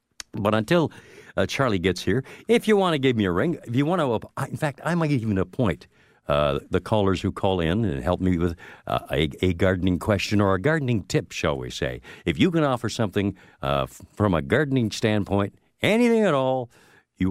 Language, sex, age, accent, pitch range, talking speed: English, male, 60-79, American, 90-125 Hz, 210 wpm